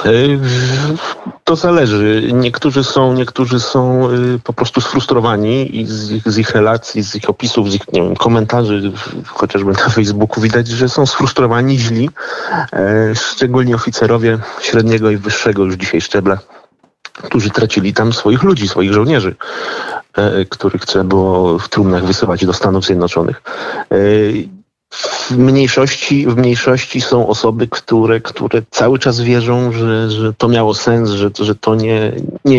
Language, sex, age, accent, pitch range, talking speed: Polish, male, 40-59, native, 105-125 Hz, 140 wpm